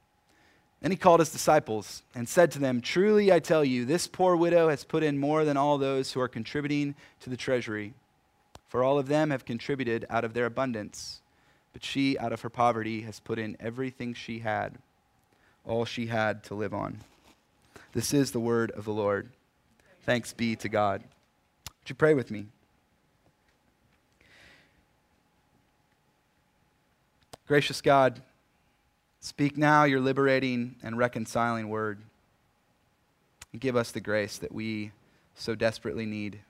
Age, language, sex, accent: 30-49, English, male, American